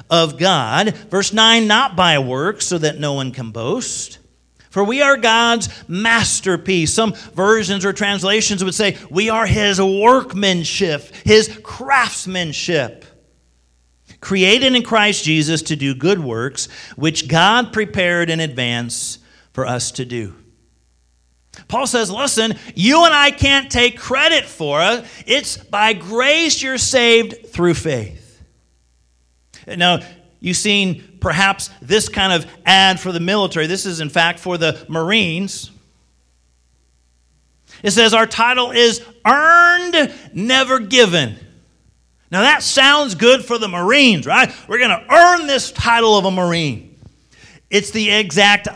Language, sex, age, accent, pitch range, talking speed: English, male, 40-59, American, 130-220 Hz, 135 wpm